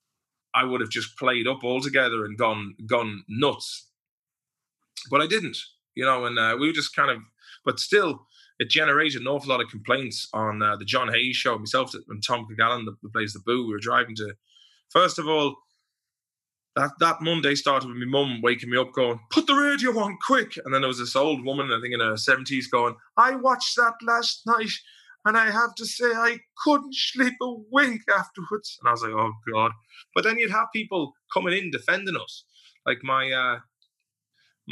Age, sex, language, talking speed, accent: 20-39, male, English, 200 wpm, British